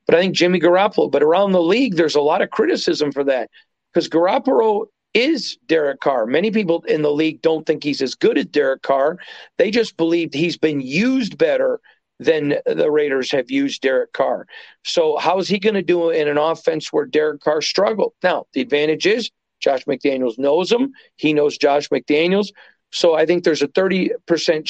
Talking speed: 195 wpm